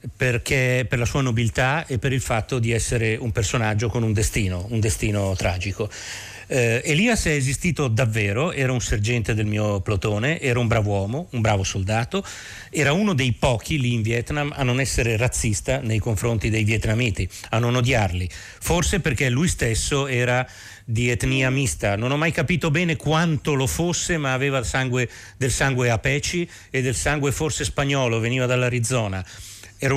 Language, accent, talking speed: Italian, native, 170 wpm